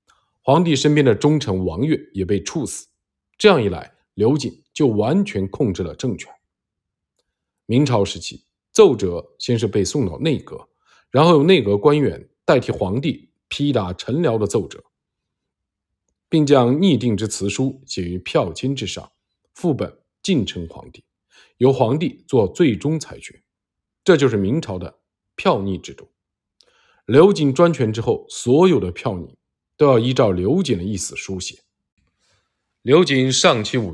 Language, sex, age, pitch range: Chinese, male, 50-69, 100-150 Hz